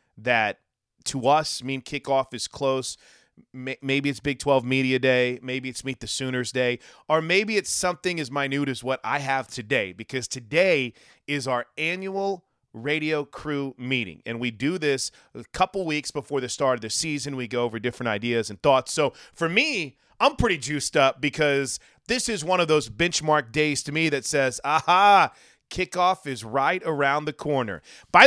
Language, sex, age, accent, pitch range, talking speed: English, male, 30-49, American, 125-160 Hz, 180 wpm